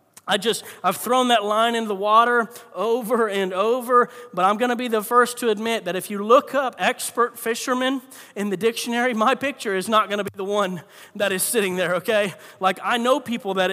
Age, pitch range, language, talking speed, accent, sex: 40-59, 185-235 Hz, English, 210 wpm, American, male